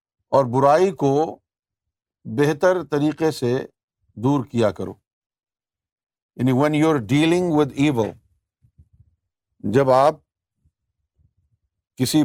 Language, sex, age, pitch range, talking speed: Urdu, male, 50-69, 95-140 Hz, 90 wpm